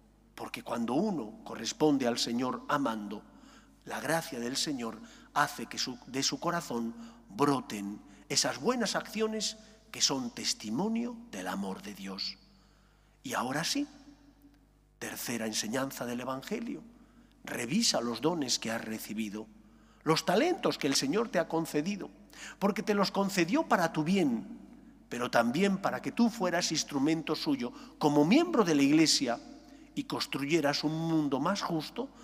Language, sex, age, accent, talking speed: English, male, 50-69, Spanish, 140 wpm